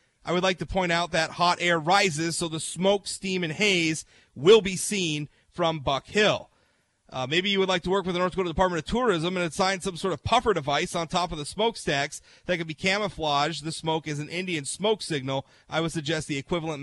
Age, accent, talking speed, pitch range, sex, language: 30-49, American, 230 wpm, 150-195 Hz, male, English